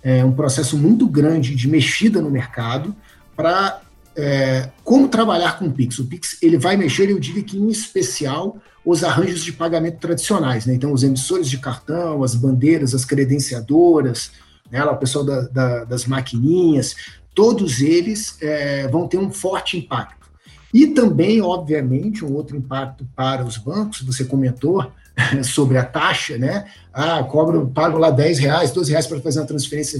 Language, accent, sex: Portuguese, Brazilian, male